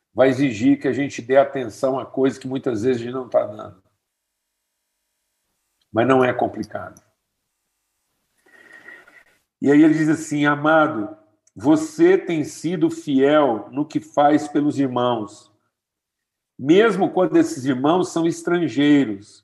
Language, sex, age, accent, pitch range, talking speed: Portuguese, male, 50-69, Brazilian, 120-160 Hz, 130 wpm